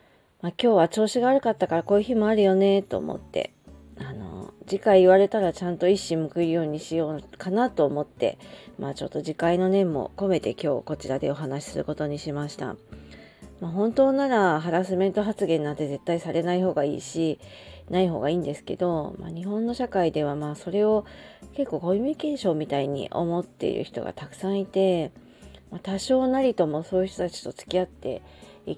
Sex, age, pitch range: female, 40-59, 155-200 Hz